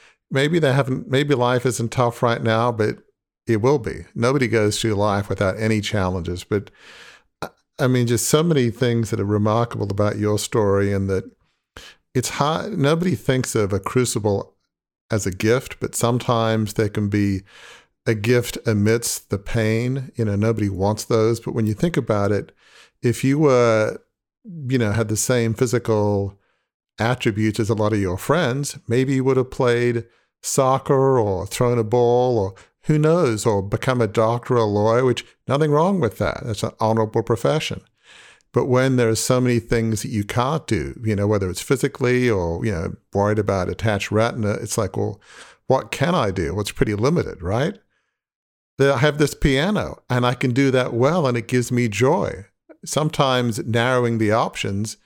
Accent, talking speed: American, 180 wpm